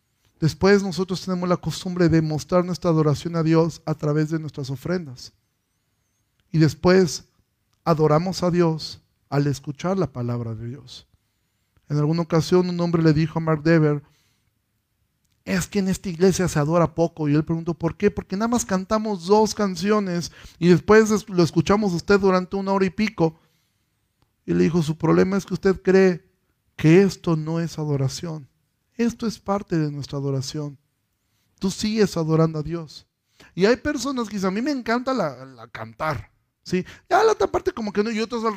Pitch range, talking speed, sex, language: 145-195 Hz, 180 wpm, male, Spanish